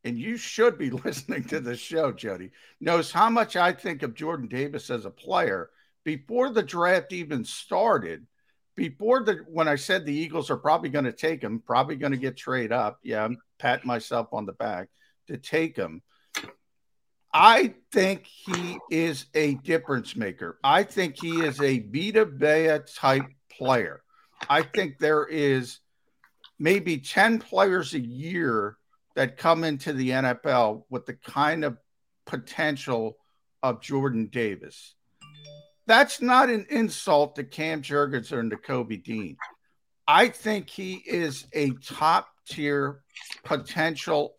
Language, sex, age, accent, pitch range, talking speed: English, male, 50-69, American, 135-195 Hz, 145 wpm